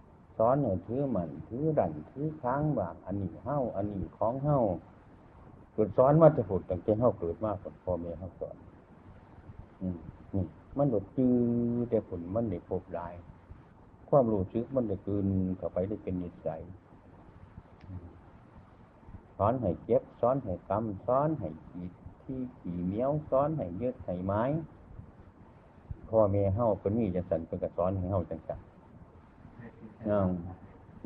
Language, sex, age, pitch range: Chinese, male, 60-79, 90-110 Hz